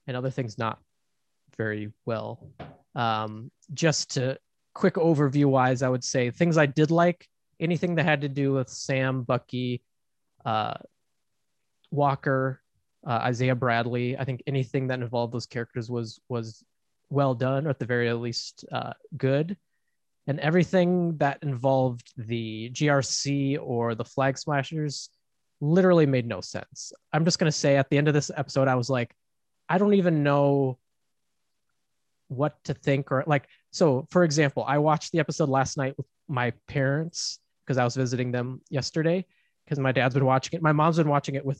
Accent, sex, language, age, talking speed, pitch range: American, male, English, 20-39, 165 wpm, 125-150 Hz